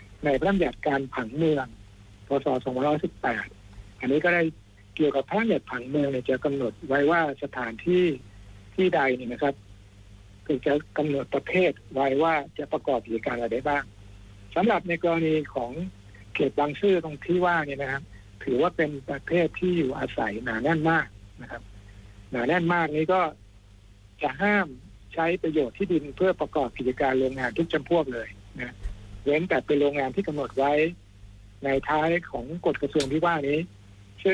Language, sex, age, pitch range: Thai, male, 60-79, 105-155 Hz